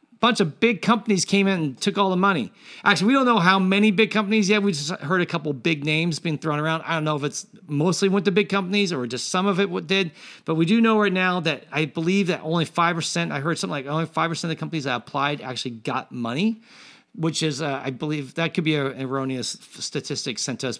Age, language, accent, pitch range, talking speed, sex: 40-59, English, American, 150-200 Hz, 245 wpm, male